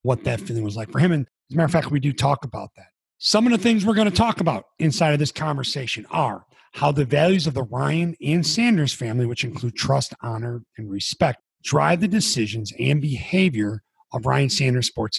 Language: English